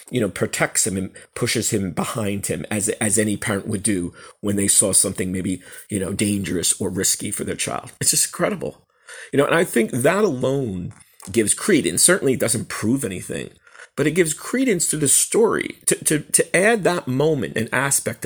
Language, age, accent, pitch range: English, 40-59, American, 110-155 Hz